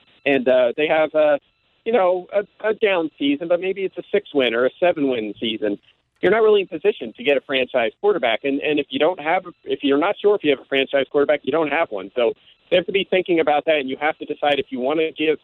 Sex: male